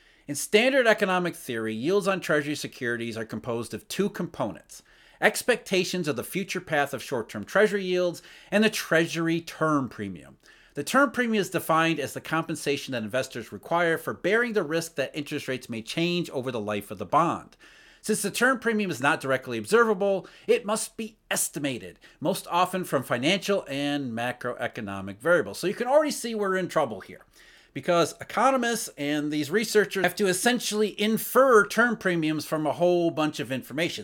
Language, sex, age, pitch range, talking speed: English, male, 40-59, 140-210 Hz, 175 wpm